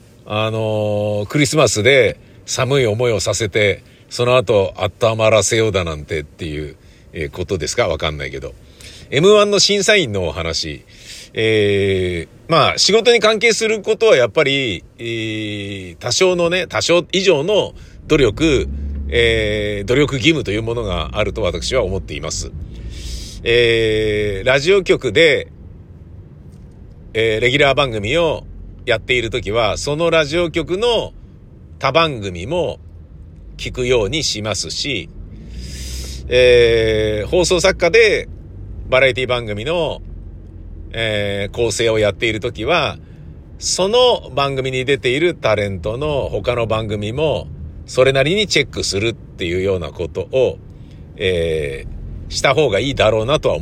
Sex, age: male, 50-69